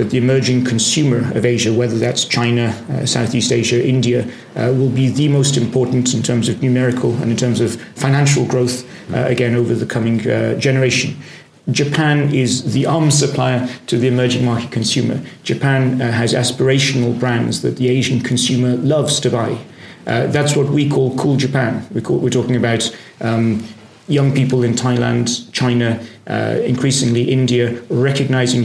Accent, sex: British, male